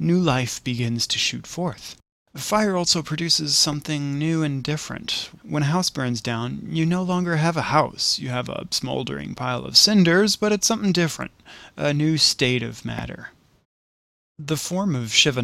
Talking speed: 170 wpm